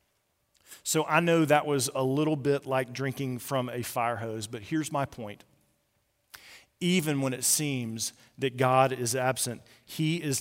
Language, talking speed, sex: English, 160 wpm, male